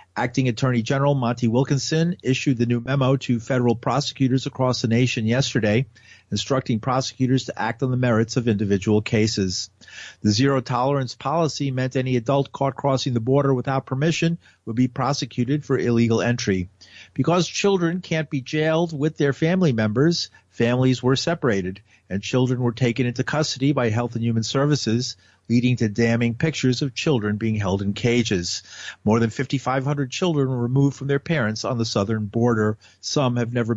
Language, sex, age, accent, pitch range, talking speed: English, male, 50-69, American, 115-140 Hz, 165 wpm